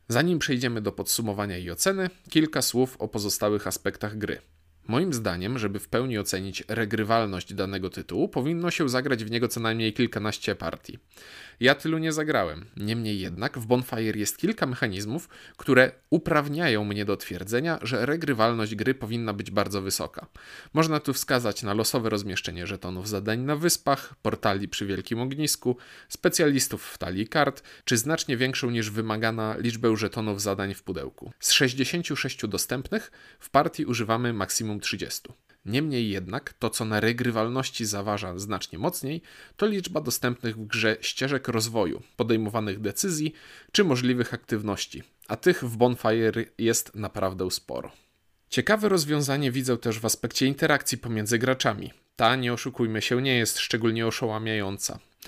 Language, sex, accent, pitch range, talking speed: Polish, male, native, 105-135 Hz, 145 wpm